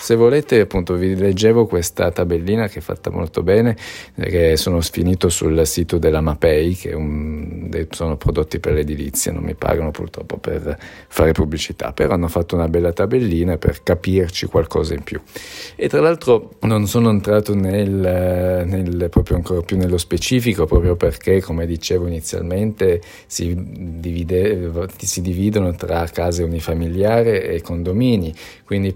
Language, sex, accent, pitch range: Italian, male, native, 85-100 Hz